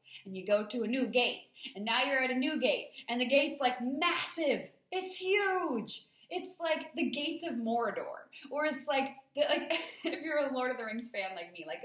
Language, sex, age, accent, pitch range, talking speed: English, female, 20-39, American, 180-270 Hz, 215 wpm